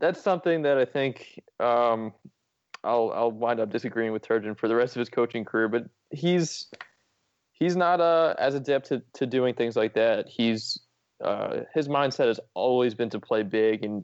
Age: 20-39